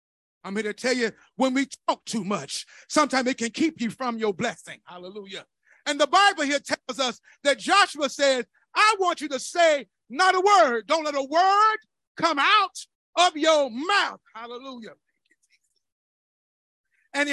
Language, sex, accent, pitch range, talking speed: English, male, American, 260-345 Hz, 165 wpm